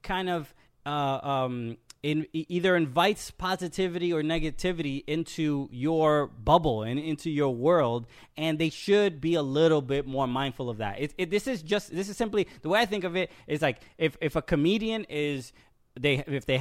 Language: English